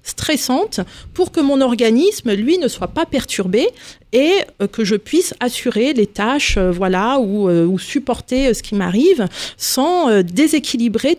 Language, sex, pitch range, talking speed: French, female, 210-275 Hz, 135 wpm